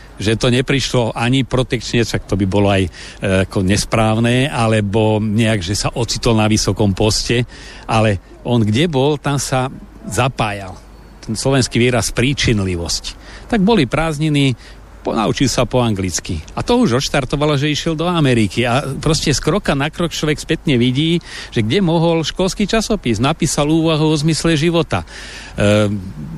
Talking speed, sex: 150 wpm, male